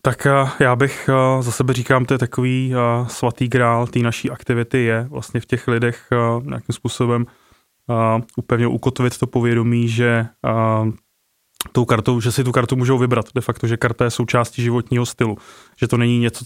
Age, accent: 20-39, native